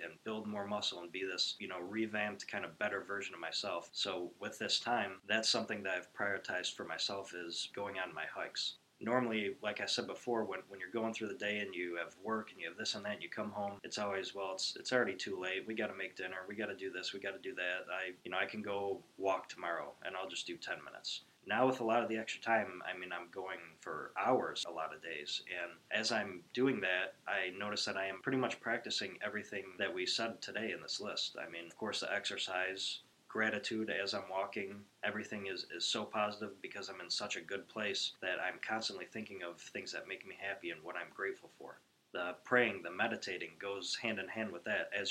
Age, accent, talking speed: 20-39, American, 240 wpm